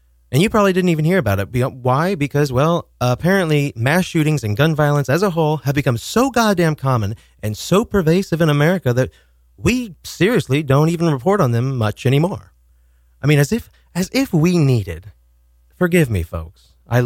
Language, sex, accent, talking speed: English, male, American, 185 wpm